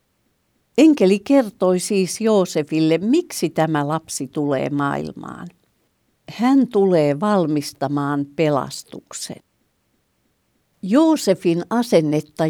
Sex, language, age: female, Finnish, 60-79